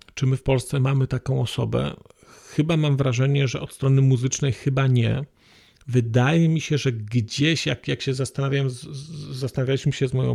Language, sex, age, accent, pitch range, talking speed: Polish, male, 40-59, native, 125-150 Hz, 170 wpm